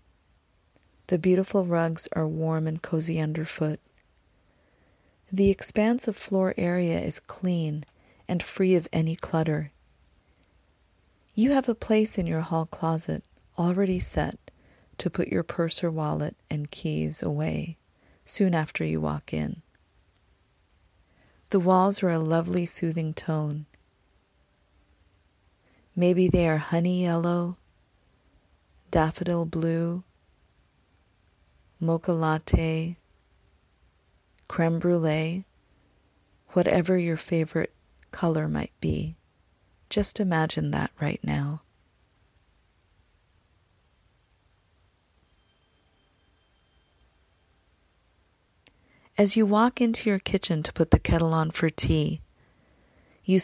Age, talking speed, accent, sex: 40-59, 100 wpm, American, female